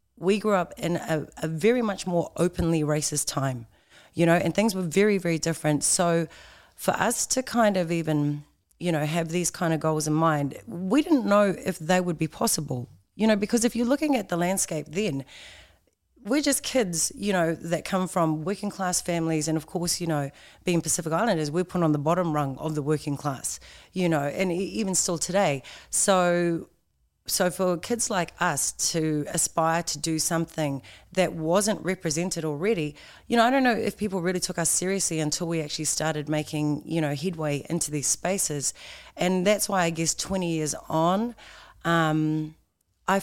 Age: 30-49